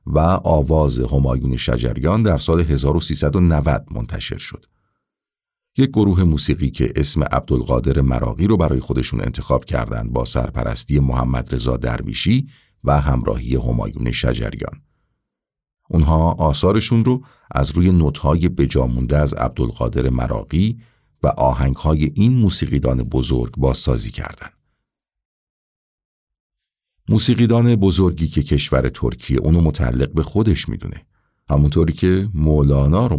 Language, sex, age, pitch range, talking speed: Persian, male, 50-69, 65-90 Hz, 115 wpm